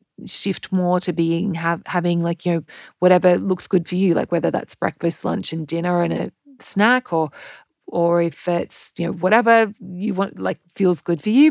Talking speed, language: 200 wpm, English